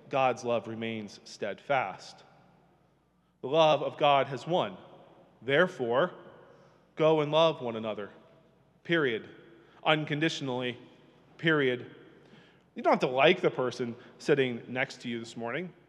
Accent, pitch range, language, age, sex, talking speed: American, 130-175 Hz, English, 30-49, male, 120 wpm